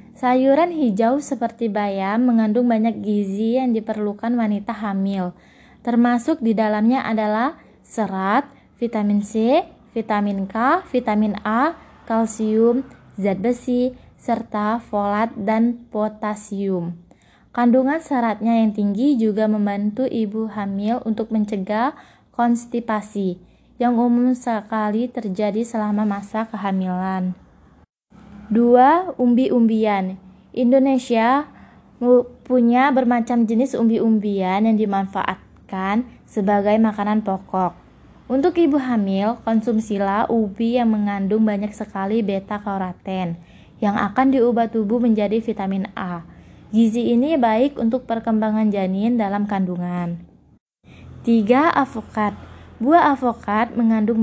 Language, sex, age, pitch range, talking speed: Indonesian, female, 20-39, 205-240 Hz, 100 wpm